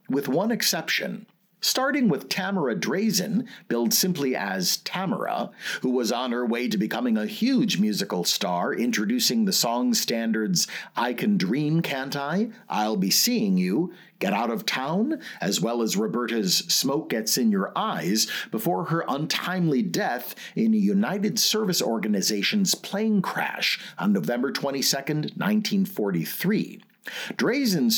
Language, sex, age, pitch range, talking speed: English, male, 50-69, 155-215 Hz, 135 wpm